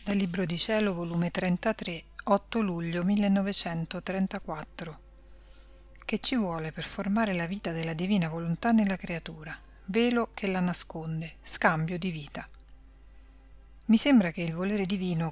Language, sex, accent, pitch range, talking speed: Italian, female, native, 170-205 Hz, 135 wpm